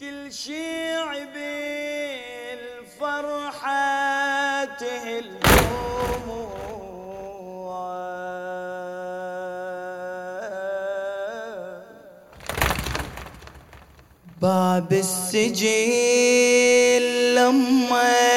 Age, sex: 30-49, male